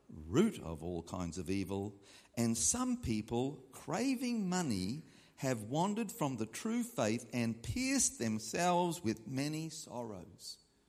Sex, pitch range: male, 105-145 Hz